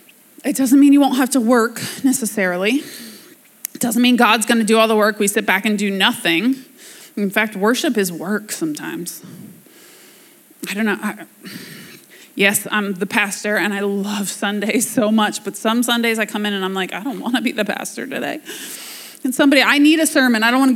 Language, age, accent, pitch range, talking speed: English, 20-39, American, 200-260 Hz, 195 wpm